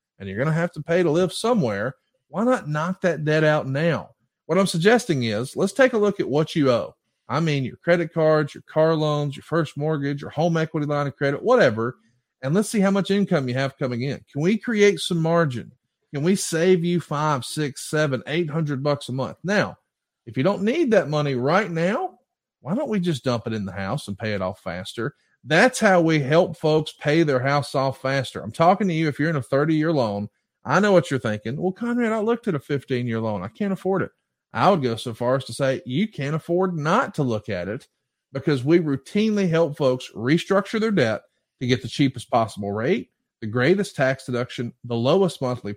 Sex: male